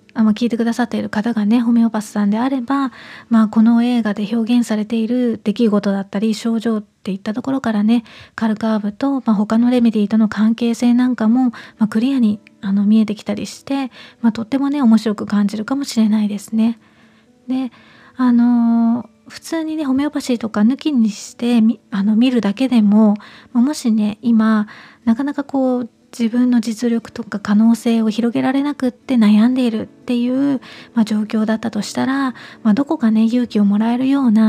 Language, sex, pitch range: Japanese, female, 215-245 Hz